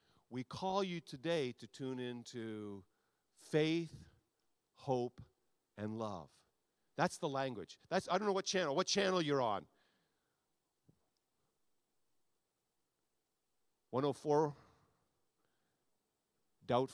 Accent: American